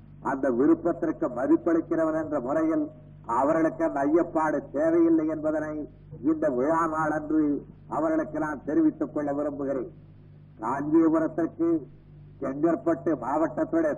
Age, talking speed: 60-79, 90 wpm